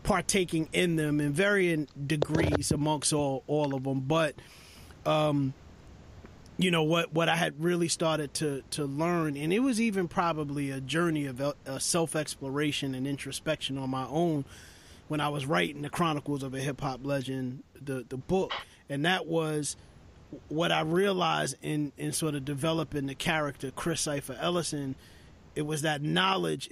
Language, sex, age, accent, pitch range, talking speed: English, male, 30-49, American, 135-160 Hz, 165 wpm